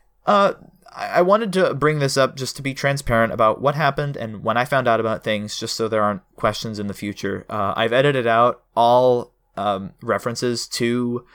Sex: male